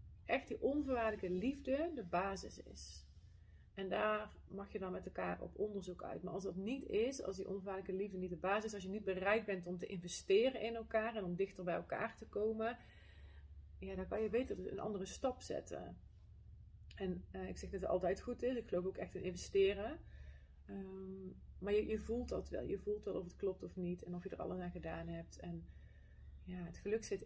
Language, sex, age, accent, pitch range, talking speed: Dutch, female, 30-49, Dutch, 175-215 Hz, 220 wpm